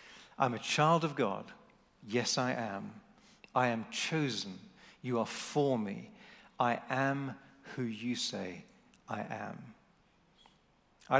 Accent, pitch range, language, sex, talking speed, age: British, 125-150 Hz, English, male, 125 wpm, 40-59